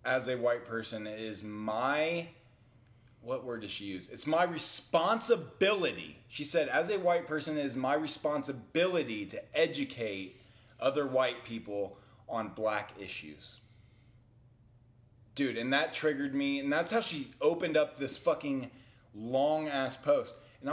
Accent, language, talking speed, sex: American, English, 140 wpm, male